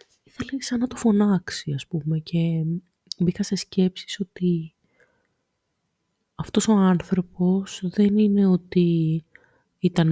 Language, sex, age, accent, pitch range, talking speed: Greek, female, 20-39, native, 160-205 Hz, 115 wpm